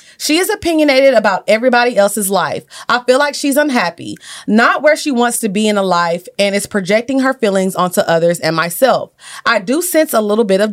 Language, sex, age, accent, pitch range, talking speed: English, female, 30-49, American, 185-260 Hz, 205 wpm